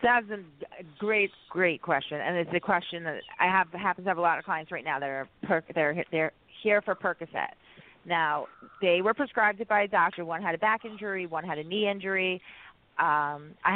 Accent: American